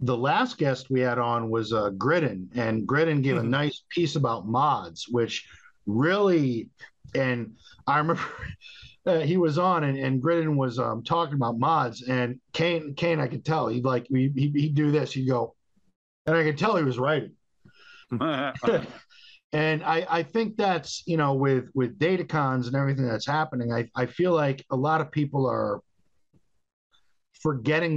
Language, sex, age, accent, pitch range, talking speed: English, male, 50-69, American, 125-160 Hz, 175 wpm